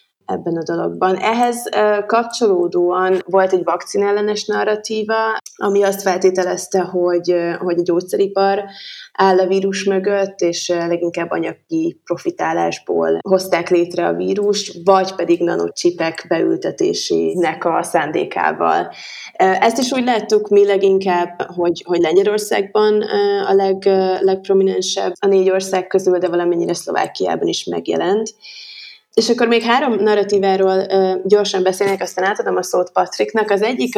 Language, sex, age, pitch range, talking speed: Hungarian, female, 20-39, 185-230 Hz, 120 wpm